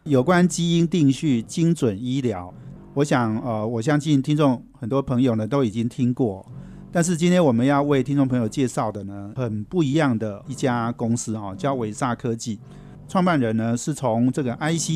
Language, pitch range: Chinese, 115-145 Hz